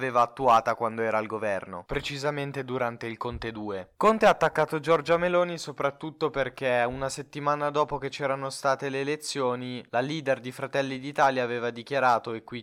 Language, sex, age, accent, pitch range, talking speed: Italian, male, 20-39, native, 120-145 Hz, 165 wpm